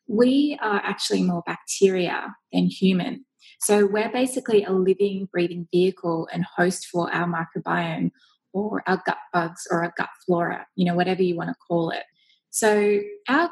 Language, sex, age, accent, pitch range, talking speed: English, female, 20-39, Australian, 180-215 Hz, 165 wpm